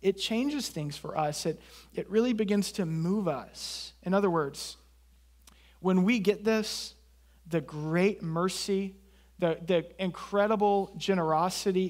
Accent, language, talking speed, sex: American, English, 130 wpm, male